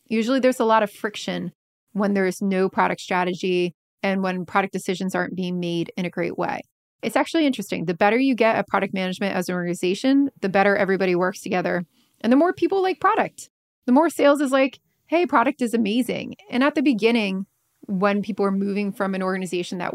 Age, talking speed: 20-39, 205 wpm